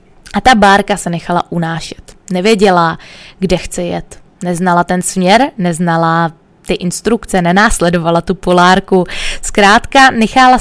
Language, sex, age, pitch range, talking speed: Czech, female, 20-39, 175-205 Hz, 120 wpm